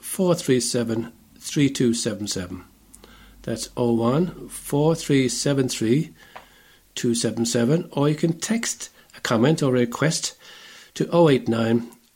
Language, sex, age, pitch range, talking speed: English, male, 60-79, 115-150 Hz, 95 wpm